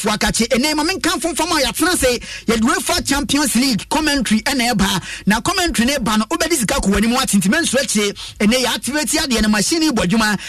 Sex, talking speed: male, 195 wpm